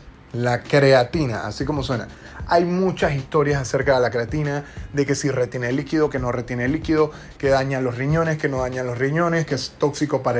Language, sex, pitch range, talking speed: Spanish, male, 125-155 Hz, 195 wpm